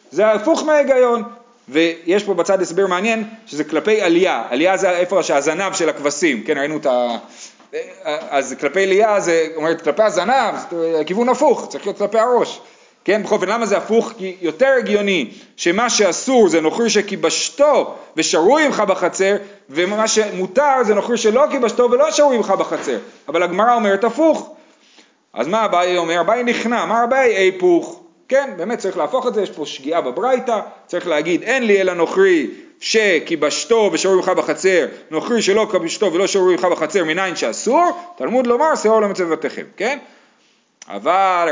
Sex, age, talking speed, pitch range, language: male, 30-49, 155 wpm, 165-240 Hz, Hebrew